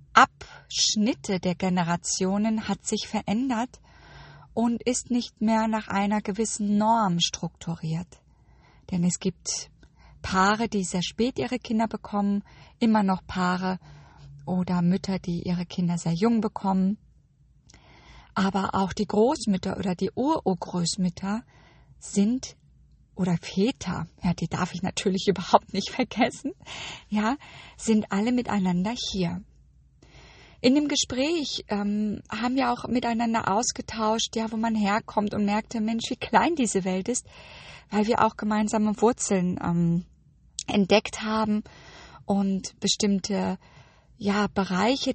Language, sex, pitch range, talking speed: German, female, 185-225 Hz, 120 wpm